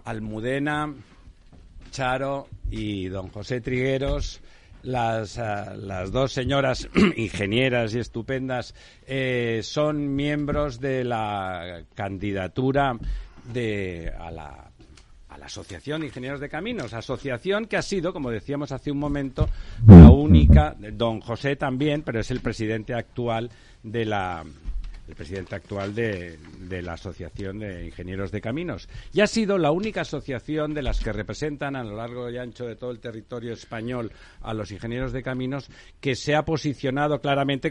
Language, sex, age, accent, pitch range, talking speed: Spanish, male, 60-79, Spanish, 100-135 Hz, 145 wpm